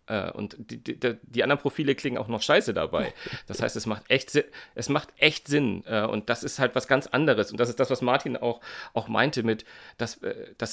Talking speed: 225 wpm